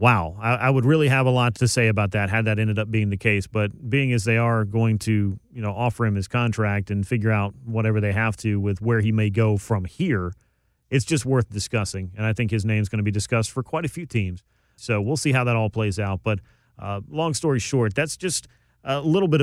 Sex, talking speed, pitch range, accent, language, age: male, 255 wpm, 105-125 Hz, American, English, 30-49